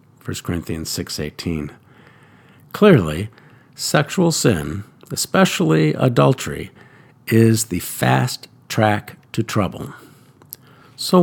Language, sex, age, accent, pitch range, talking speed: English, male, 50-69, American, 110-150 Hz, 80 wpm